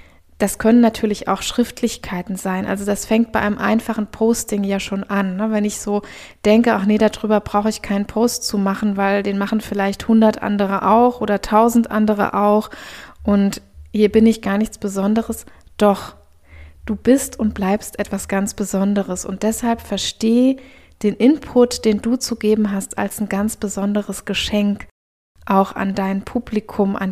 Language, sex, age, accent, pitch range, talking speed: German, female, 20-39, German, 195-220 Hz, 170 wpm